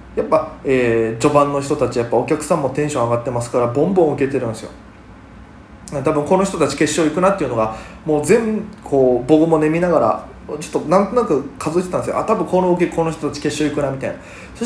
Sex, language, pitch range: male, Japanese, 135-205 Hz